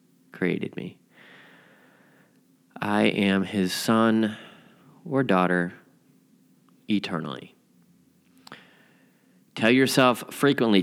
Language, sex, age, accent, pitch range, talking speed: English, male, 30-49, American, 90-125 Hz, 65 wpm